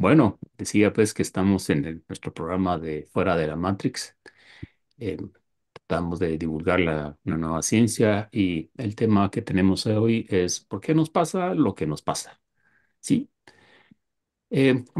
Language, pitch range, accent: Spanish, 90-115 Hz, Mexican